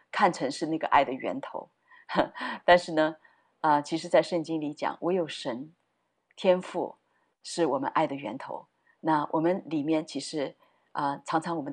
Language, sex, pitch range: Chinese, female, 155-200 Hz